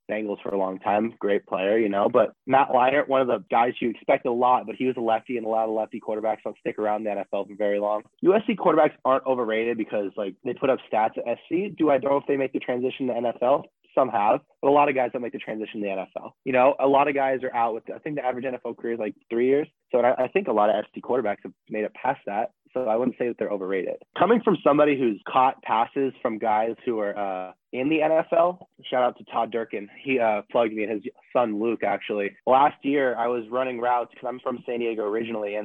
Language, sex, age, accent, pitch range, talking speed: English, male, 20-39, American, 115-135 Hz, 265 wpm